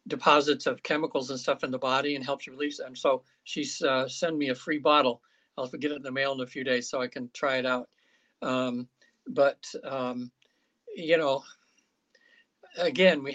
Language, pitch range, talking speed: English, 135-165 Hz, 200 wpm